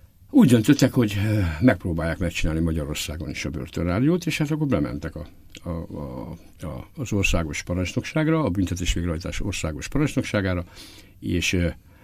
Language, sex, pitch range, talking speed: Hungarian, male, 85-105 Hz, 125 wpm